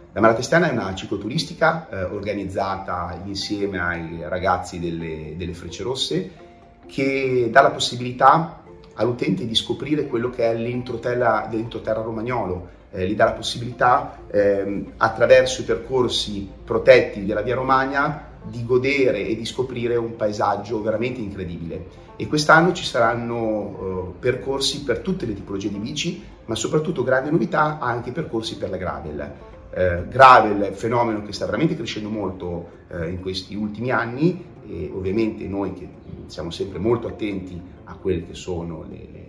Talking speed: 145 wpm